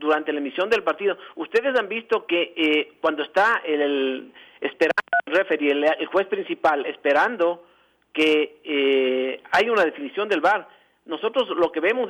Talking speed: 145 wpm